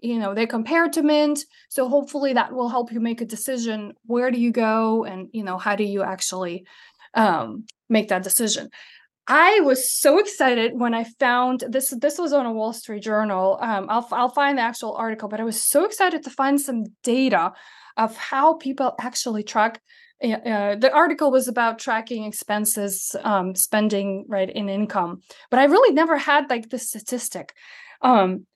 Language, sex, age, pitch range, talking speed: English, female, 20-39, 215-280 Hz, 185 wpm